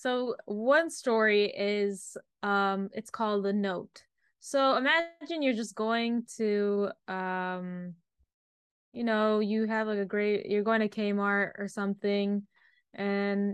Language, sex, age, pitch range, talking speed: English, female, 10-29, 200-245 Hz, 135 wpm